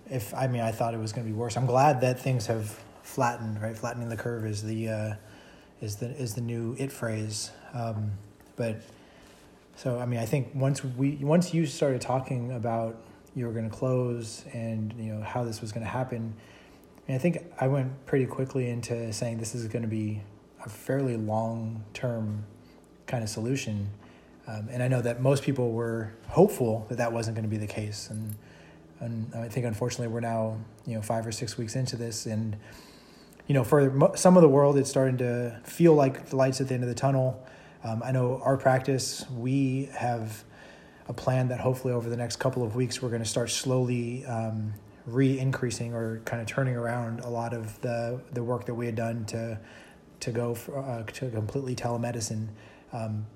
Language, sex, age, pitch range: English, male, 30-49, 110-130 Hz